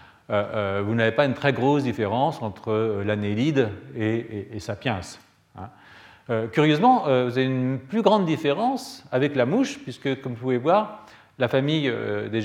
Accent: French